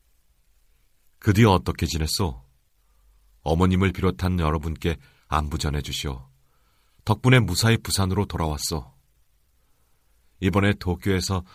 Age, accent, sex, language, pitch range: 40-59, native, male, Korean, 70-90 Hz